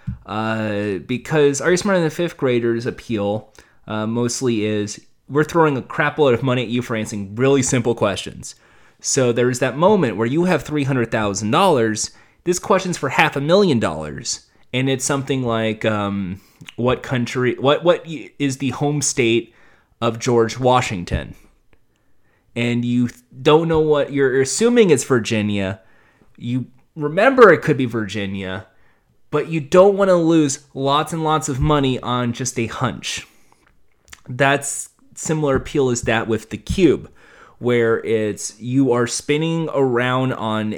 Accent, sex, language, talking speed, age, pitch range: American, male, English, 155 wpm, 30-49, 110-145 Hz